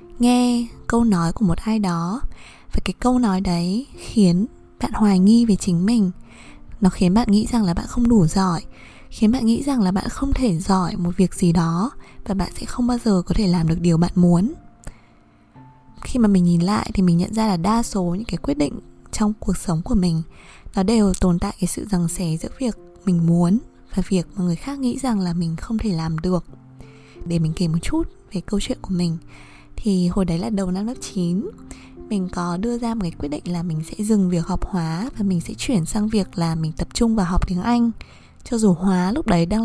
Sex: female